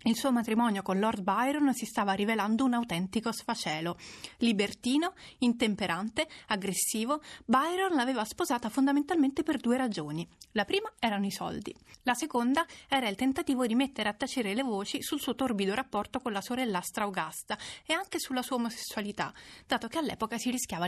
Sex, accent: female, native